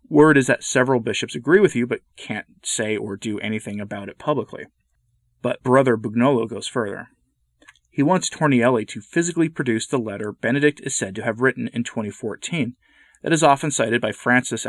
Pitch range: 105-140 Hz